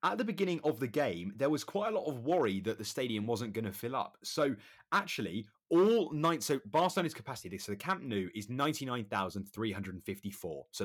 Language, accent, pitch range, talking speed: English, British, 110-150 Hz, 195 wpm